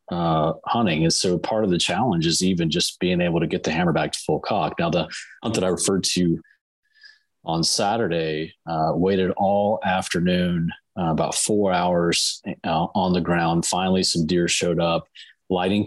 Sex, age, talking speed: male, 30-49, 180 wpm